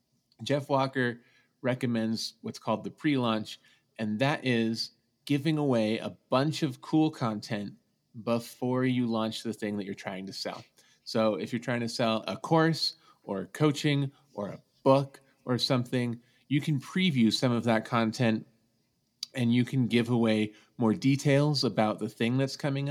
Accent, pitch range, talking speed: American, 110-130 Hz, 160 wpm